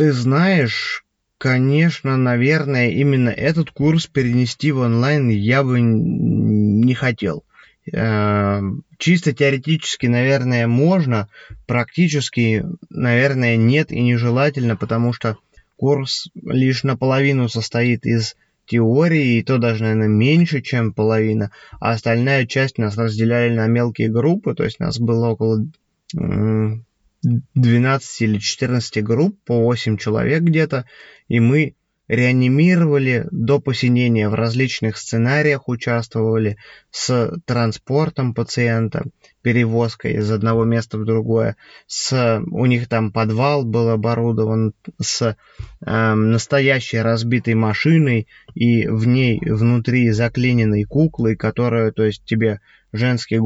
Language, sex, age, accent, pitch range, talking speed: Russian, male, 20-39, native, 115-135 Hz, 110 wpm